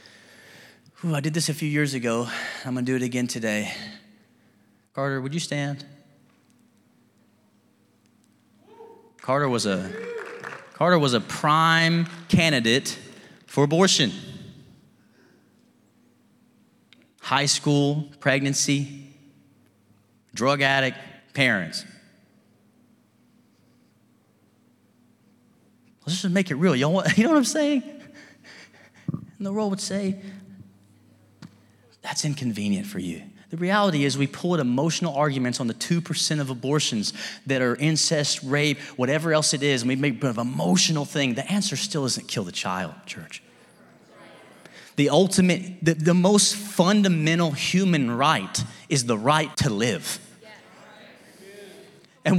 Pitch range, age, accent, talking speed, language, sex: 140-195 Hz, 30-49, American, 120 wpm, English, male